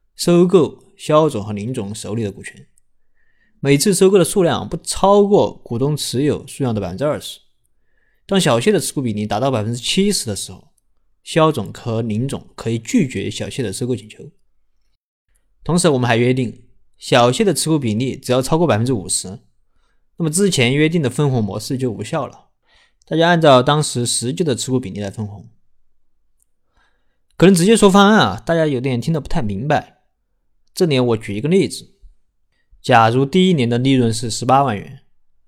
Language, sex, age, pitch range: Chinese, male, 20-39, 110-155 Hz